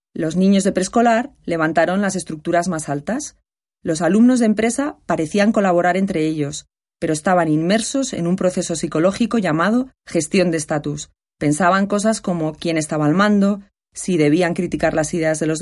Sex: female